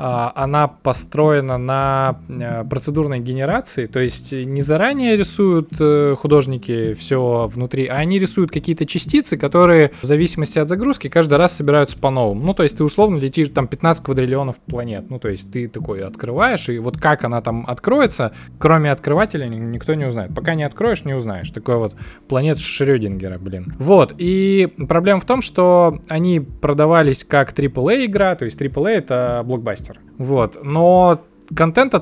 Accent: native